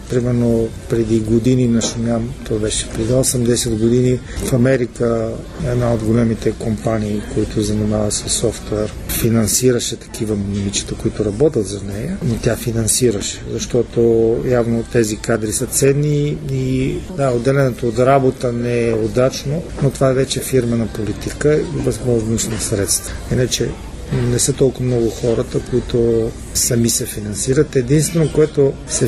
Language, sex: Bulgarian, male